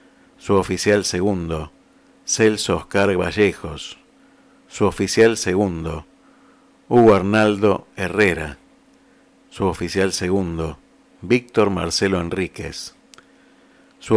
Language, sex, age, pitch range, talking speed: Spanish, male, 50-69, 90-110 Hz, 80 wpm